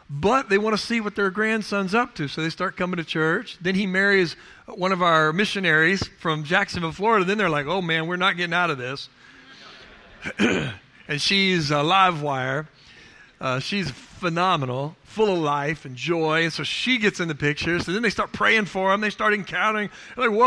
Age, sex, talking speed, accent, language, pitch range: 40-59, male, 200 wpm, American, English, 155-215 Hz